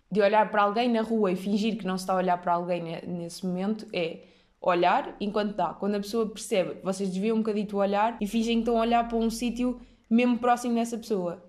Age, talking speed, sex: 20-39, 235 wpm, female